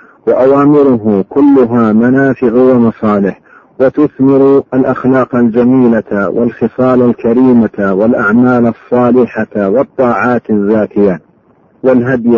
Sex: male